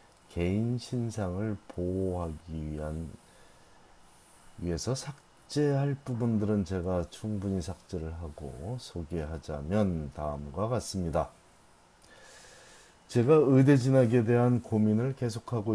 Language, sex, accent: Korean, male, native